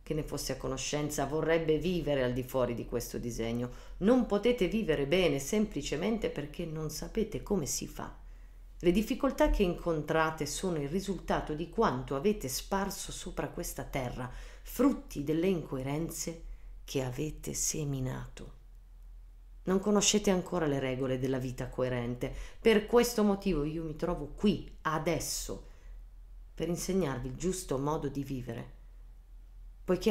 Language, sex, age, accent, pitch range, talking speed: Italian, female, 40-59, native, 130-175 Hz, 135 wpm